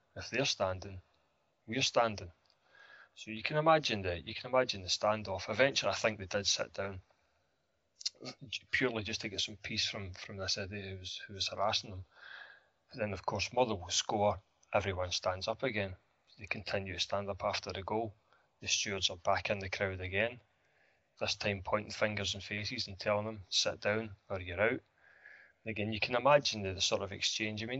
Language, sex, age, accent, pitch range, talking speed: English, male, 20-39, British, 95-110 Hz, 195 wpm